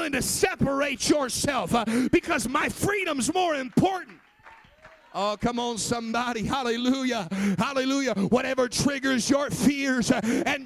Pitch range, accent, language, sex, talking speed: 235-290 Hz, American, English, male, 115 wpm